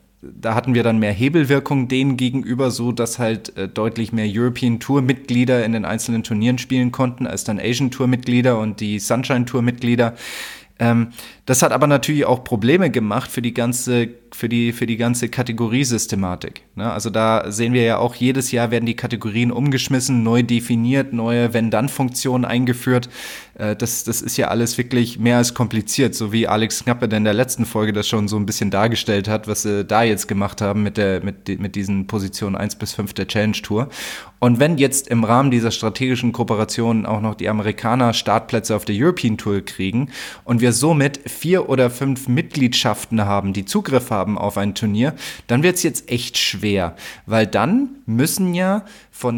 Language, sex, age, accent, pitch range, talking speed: German, male, 20-39, German, 110-125 Hz, 175 wpm